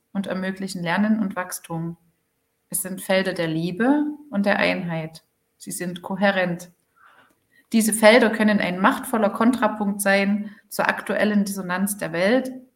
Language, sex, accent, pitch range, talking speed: German, female, German, 180-230 Hz, 130 wpm